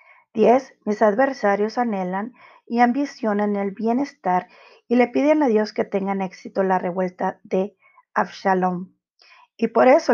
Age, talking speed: 40-59, 135 wpm